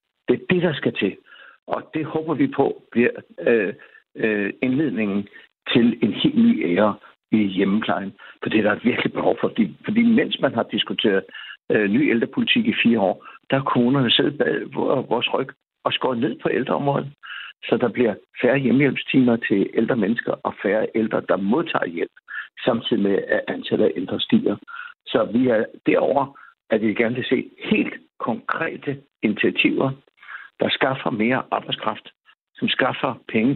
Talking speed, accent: 165 wpm, native